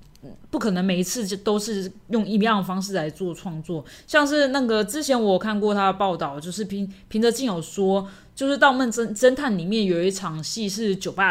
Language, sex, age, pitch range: Chinese, female, 20-39, 180-235 Hz